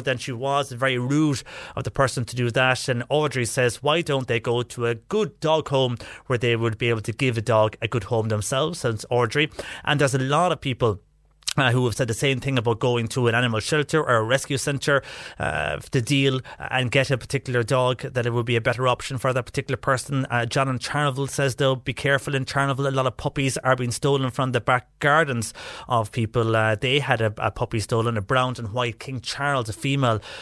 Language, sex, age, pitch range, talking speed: English, male, 30-49, 120-135 Hz, 230 wpm